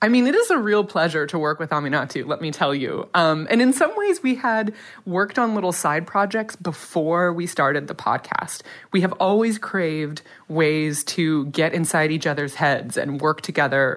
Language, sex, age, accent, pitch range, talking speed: English, female, 20-39, American, 155-205 Hz, 200 wpm